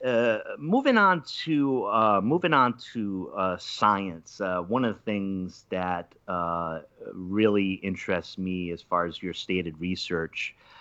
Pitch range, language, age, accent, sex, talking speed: 90-105 Hz, English, 30-49, American, male, 145 wpm